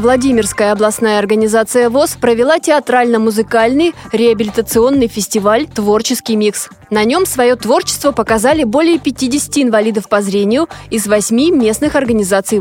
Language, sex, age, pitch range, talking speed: Russian, female, 20-39, 215-280 Hz, 115 wpm